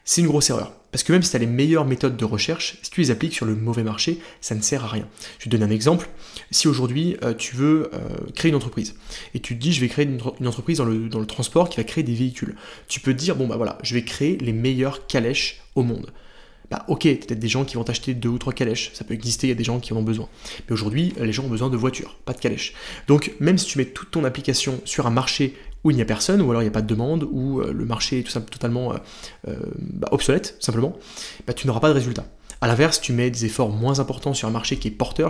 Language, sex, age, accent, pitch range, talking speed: French, male, 20-39, French, 115-150 Hz, 280 wpm